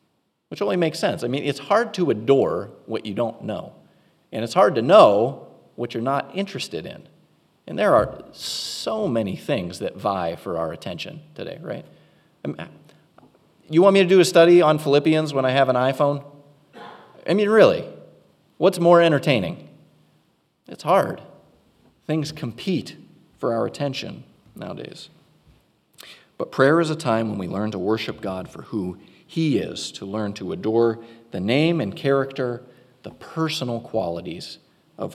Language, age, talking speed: English, 30-49, 155 wpm